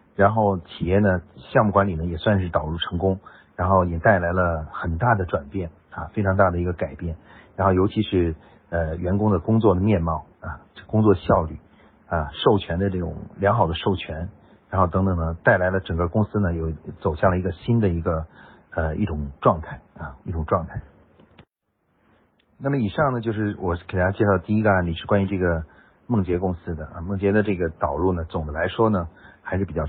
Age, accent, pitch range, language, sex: 50-69, native, 85-105 Hz, Chinese, male